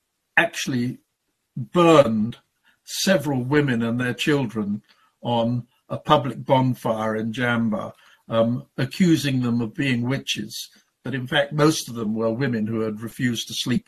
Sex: male